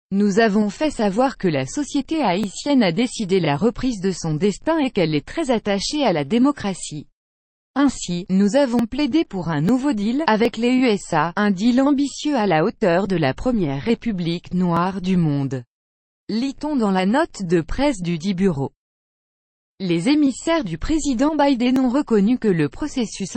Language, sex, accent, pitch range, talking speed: French, female, French, 180-260 Hz, 170 wpm